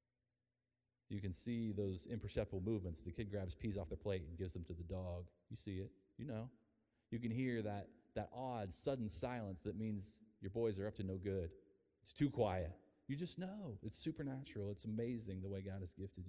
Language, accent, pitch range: English, American, 90-115 Hz